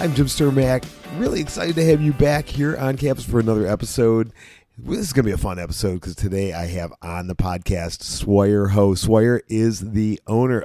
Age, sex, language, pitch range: 40-59, male, English, 100-120 Hz